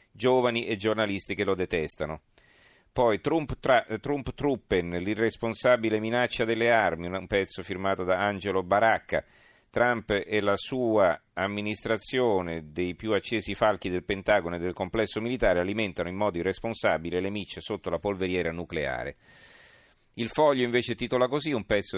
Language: Italian